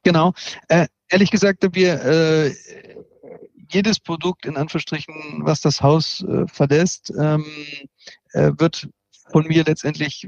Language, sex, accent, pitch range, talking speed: German, male, German, 145-175 Hz, 125 wpm